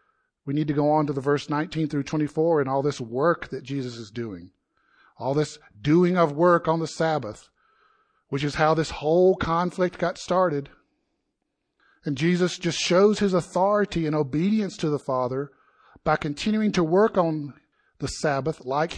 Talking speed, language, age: 170 wpm, English, 50-69